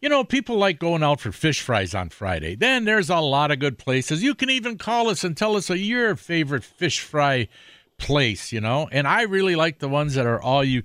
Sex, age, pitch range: male, 50-69, 120-170 Hz